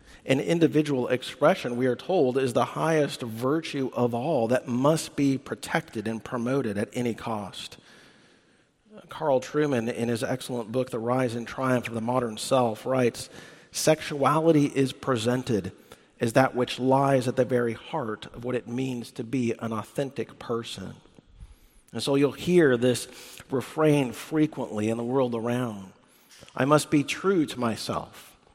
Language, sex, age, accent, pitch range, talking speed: English, male, 40-59, American, 120-145 Hz, 155 wpm